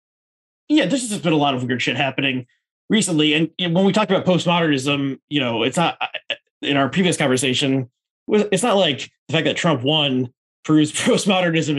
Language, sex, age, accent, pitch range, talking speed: English, male, 20-39, American, 140-180 Hz, 180 wpm